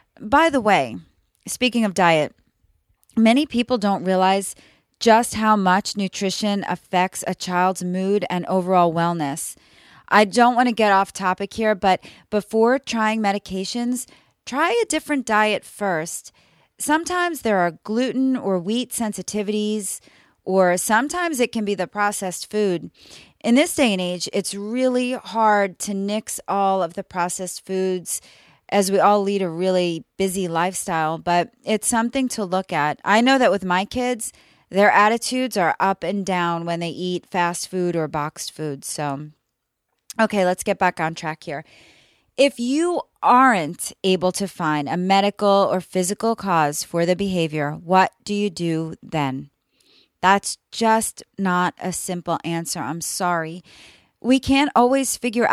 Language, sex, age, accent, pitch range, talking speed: English, female, 30-49, American, 175-225 Hz, 150 wpm